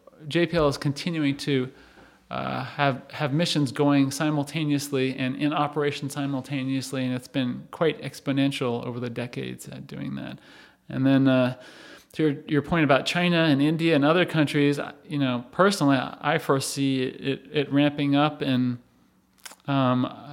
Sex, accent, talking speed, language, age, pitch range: male, American, 150 wpm, English, 30-49, 135-155 Hz